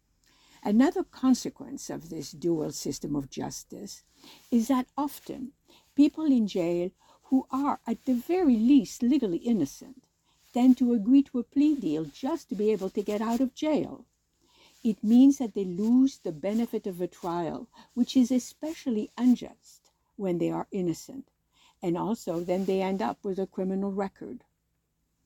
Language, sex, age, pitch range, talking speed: English, female, 60-79, 190-255 Hz, 155 wpm